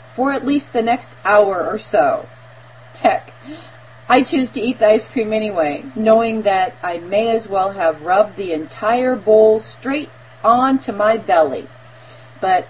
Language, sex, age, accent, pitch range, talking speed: English, female, 40-59, American, 160-250 Hz, 155 wpm